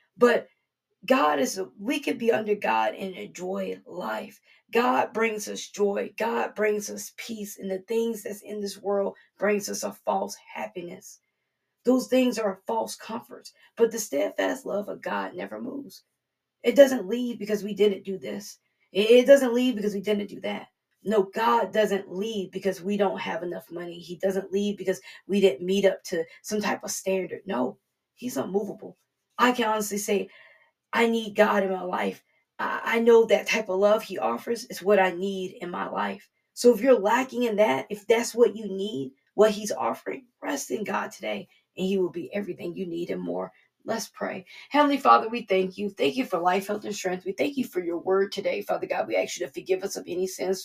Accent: American